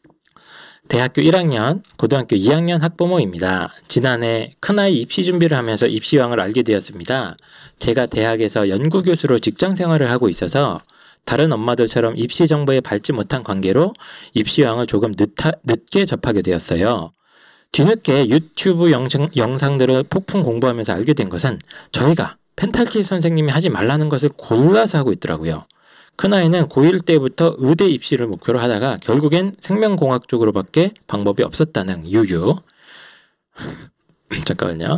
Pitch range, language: 120-185 Hz, Korean